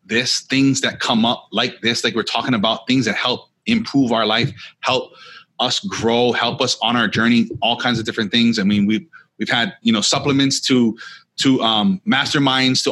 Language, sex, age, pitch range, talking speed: English, male, 30-49, 120-165 Hz, 200 wpm